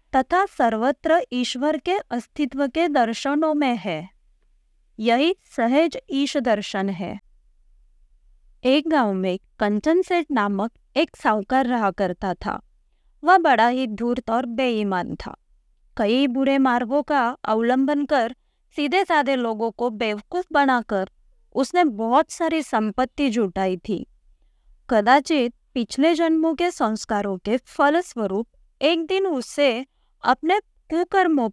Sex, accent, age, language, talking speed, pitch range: female, native, 20-39, Hindi, 110 wpm, 220-295 Hz